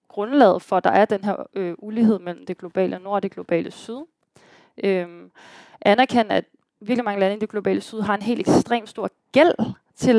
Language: Danish